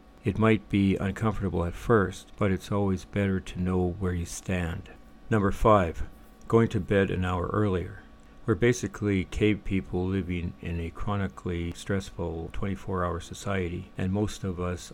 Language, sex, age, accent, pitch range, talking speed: English, male, 60-79, American, 90-105 Hz, 155 wpm